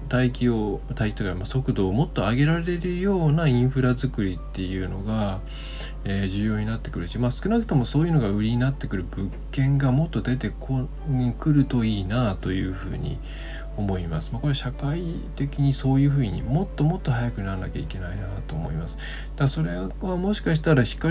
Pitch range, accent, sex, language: 100-140 Hz, native, male, Japanese